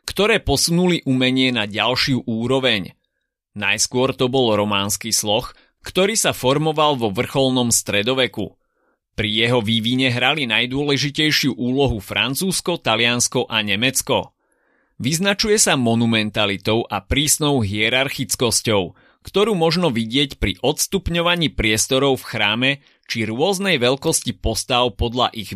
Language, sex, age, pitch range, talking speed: Slovak, male, 30-49, 115-145 Hz, 110 wpm